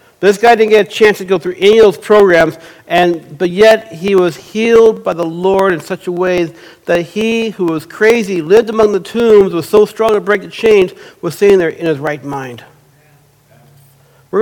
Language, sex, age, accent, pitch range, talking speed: English, male, 60-79, American, 175-230 Hz, 210 wpm